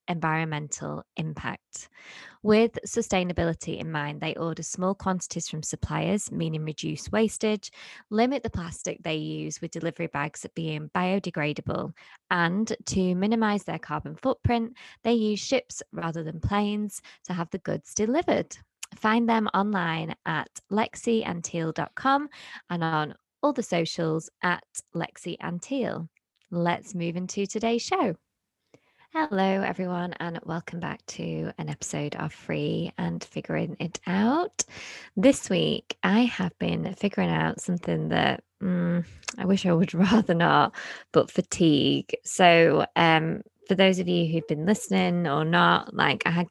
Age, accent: 20-39, British